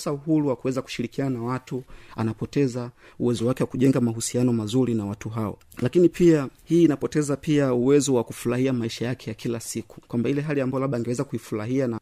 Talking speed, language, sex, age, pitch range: 185 wpm, Swahili, male, 30-49, 115-135 Hz